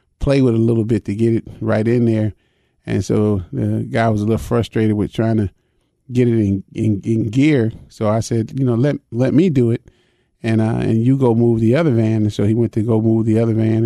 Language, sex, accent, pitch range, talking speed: English, male, American, 110-125 Hz, 245 wpm